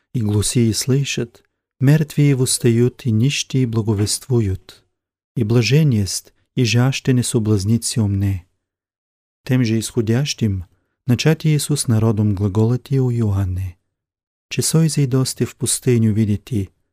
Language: Bulgarian